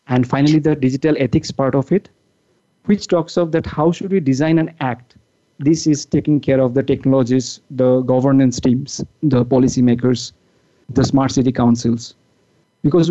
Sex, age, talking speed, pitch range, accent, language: male, 50-69, 160 wpm, 130-160 Hz, Indian, English